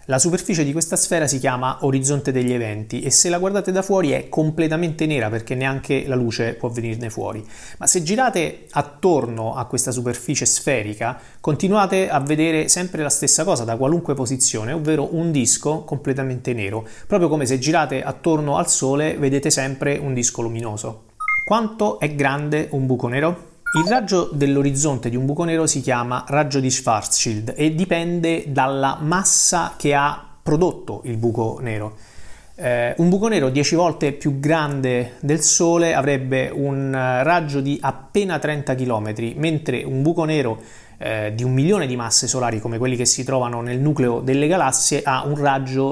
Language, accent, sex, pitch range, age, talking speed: Italian, native, male, 125-160 Hz, 30-49, 170 wpm